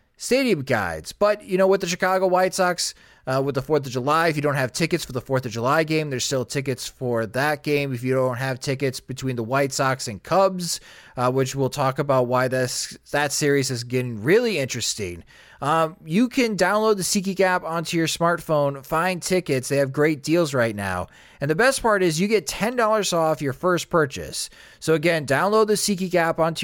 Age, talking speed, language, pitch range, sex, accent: 20-39, 215 wpm, English, 130-180 Hz, male, American